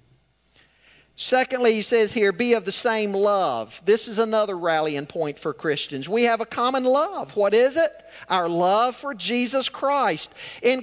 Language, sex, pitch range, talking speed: English, male, 190-260 Hz, 165 wpm